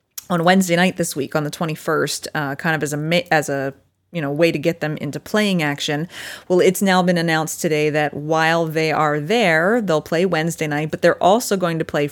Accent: American